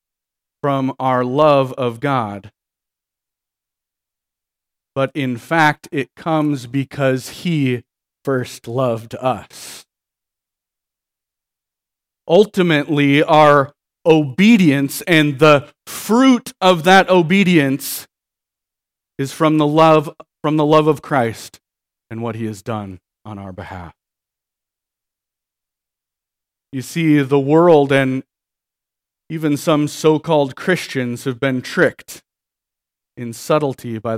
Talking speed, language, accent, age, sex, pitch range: 95 wpm, English, American, 40-59, male, 115-155 Hz